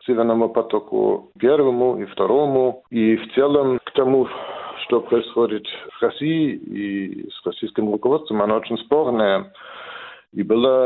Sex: male